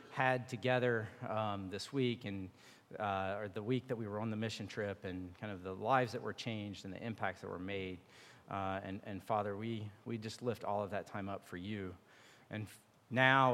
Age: 40-59